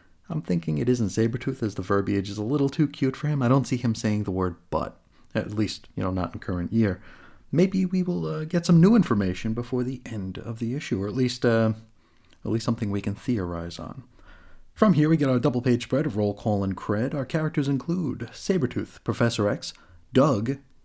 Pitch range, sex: 95-130 Hz, male